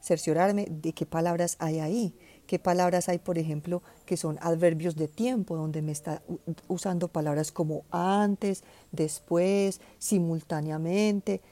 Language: Spanish